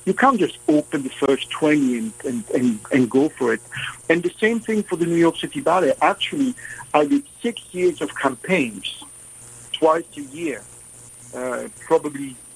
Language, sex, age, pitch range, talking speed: English, male, 60-79, 140-195 Hz, 170 wpm